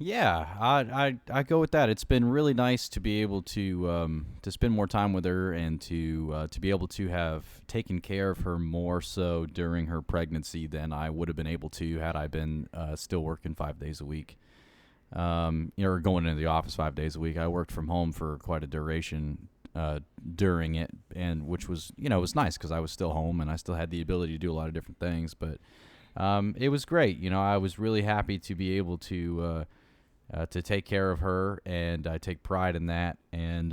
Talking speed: 240 wpm